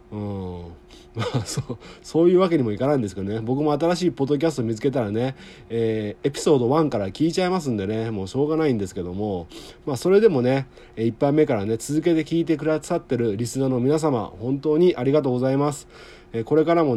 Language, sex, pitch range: Japanese, male, 110-160 Hz